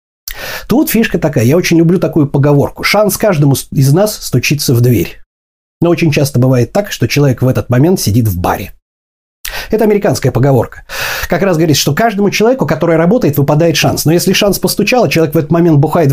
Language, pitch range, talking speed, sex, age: Russian, 125-180 Hz, 185 wpm, male, 30-49